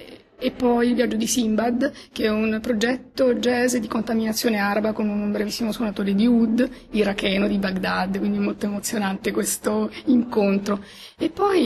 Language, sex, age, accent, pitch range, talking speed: Italian, female, 30-49, native, 205-245 Hz, 155 wpm